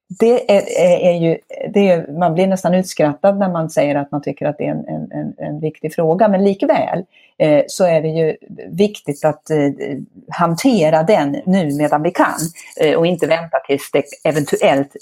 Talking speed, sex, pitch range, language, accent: 190 wpm, female, 150-185 Hz, Swedish, native